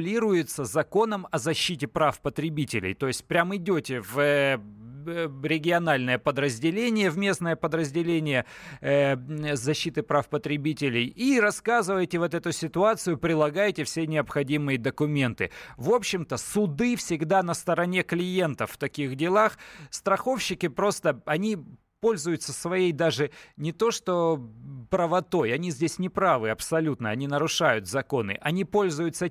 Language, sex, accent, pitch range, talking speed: Russian, male, native, 140-185 Hz, 115 wpm